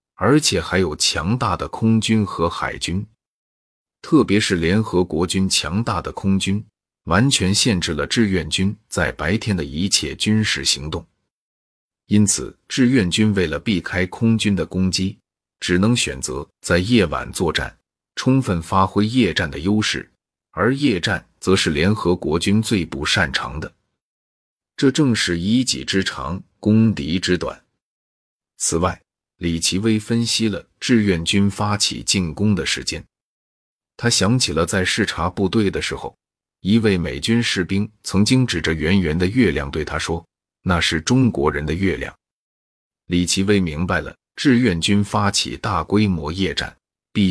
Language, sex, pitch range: Chinese, male, 85-110 Hz